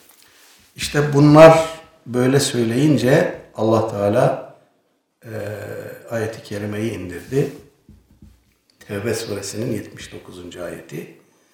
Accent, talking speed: native, 75 wpm